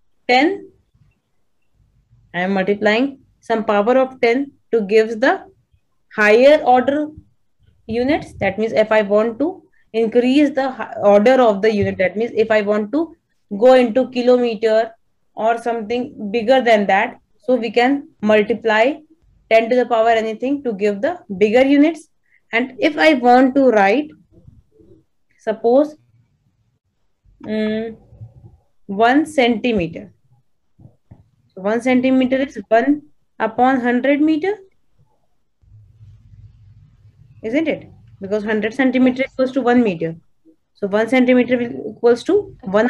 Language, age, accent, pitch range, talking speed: English, 20-39, Indian, 205-255 Hz, 120 wpm